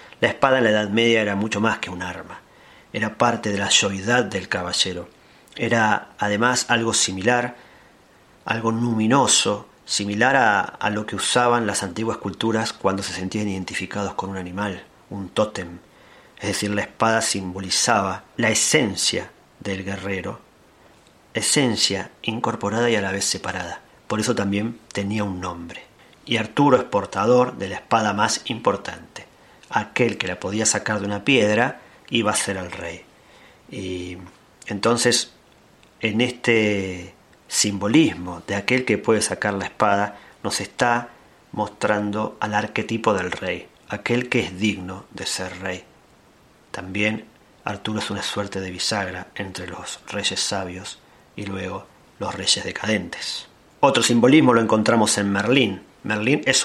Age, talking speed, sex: 40-59, 145 wpm, male